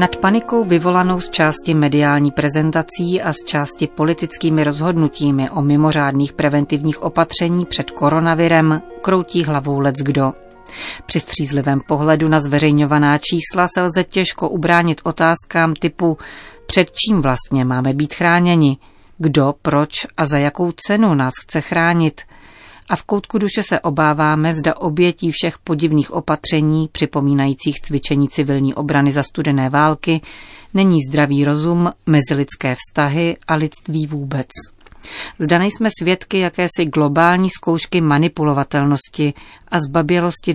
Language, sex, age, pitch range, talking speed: Czech, female, 40-59, 145-175 Hz, 125 wpm